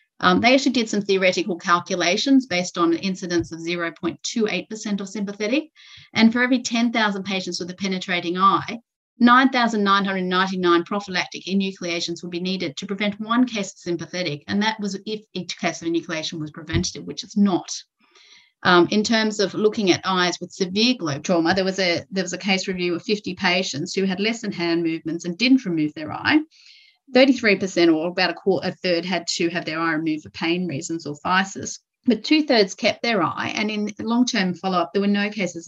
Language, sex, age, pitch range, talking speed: English, female, 30-49, 170-210 Hz, 190 wpm